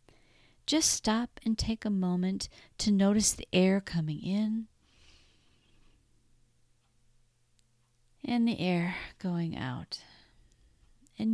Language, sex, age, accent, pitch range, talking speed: English, female, 50-69, American, 150-215 Hz, 95 wpm